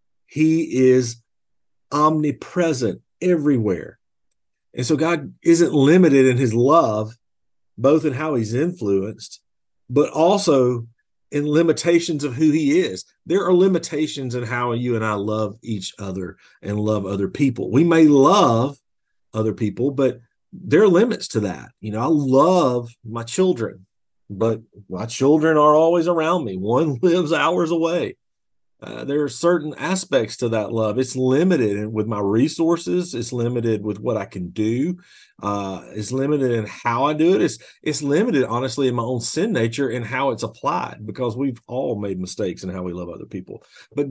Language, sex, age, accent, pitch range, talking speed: English, male, 40-59, American, 115-155 Hz, 165 wpm